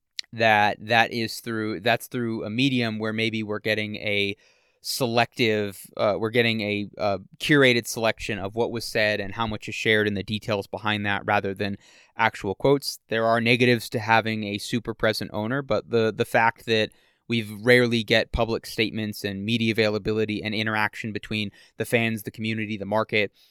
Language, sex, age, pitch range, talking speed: English, male, 20-39, 105-115 Hz, 180 wpm